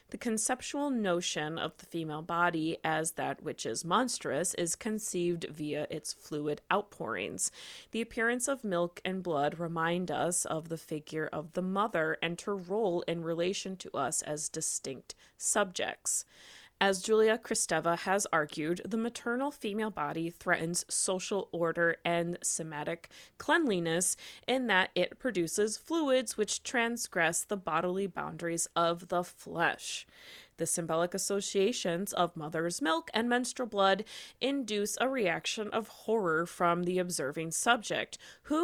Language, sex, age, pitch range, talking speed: English, female, 20-39, 170-225 Hz, 140 wpm